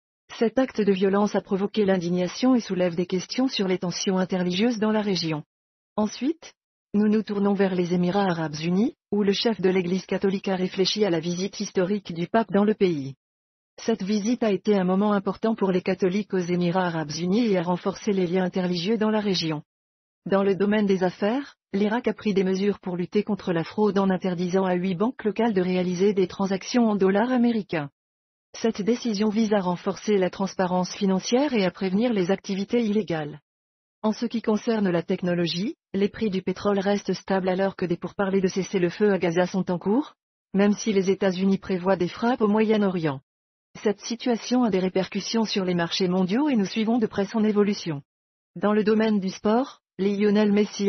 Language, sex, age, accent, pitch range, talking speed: French, female, 40-59, French, 180-210 Hz, 195 wpm